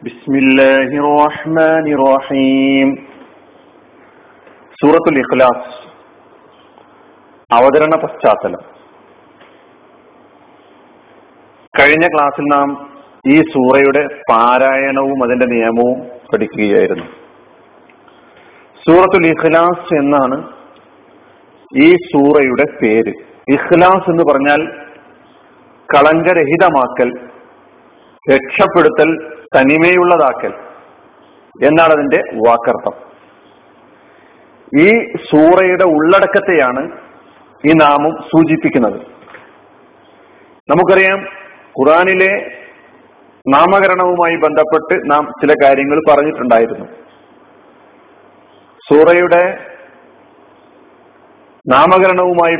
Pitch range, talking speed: 140-175 Hz, 50 wpm